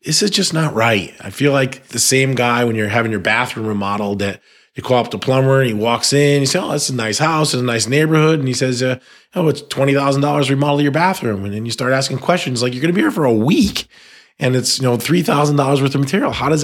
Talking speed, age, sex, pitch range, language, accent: 265 wpm, 30-49, male, 110-145 Hz, English, American